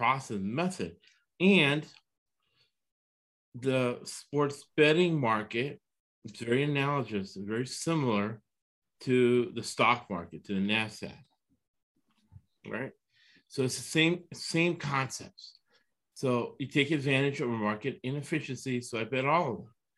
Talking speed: 120 wpm